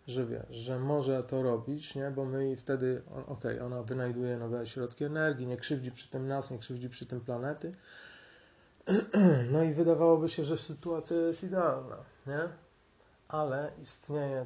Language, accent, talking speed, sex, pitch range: Polish, native, 160 wpm, male, 120-140 Hz